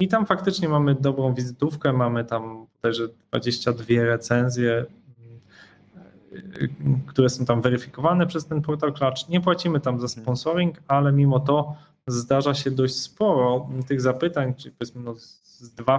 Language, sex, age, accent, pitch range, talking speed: Polish, male, 20-39, native, 125-150 Hz, 145 wpm